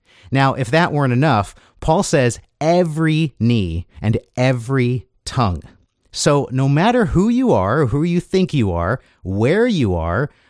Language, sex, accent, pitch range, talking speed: English, male, American, 105-160 Hz, 150 wpm